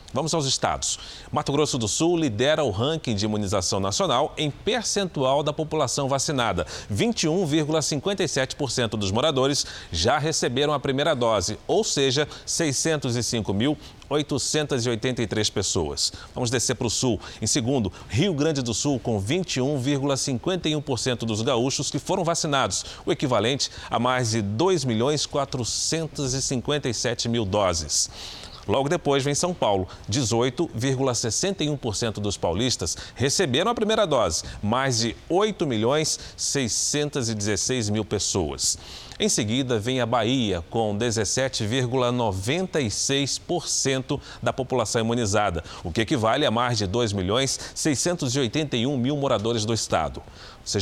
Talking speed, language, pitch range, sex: 115 wpm, Portuguese, 110-145 Hz, male